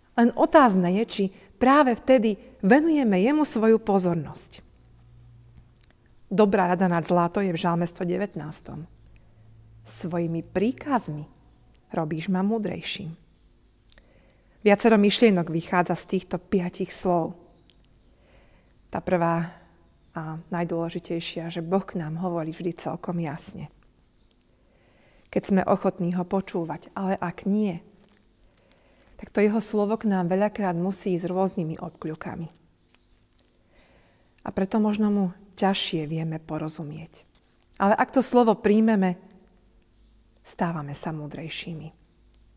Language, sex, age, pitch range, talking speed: Slovak, female, 40-59, 165-200 Hz, 105 wpm